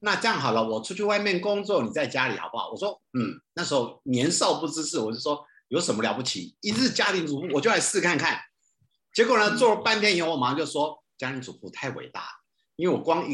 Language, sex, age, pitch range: Chinese, male, 50-69, 125-210 Hz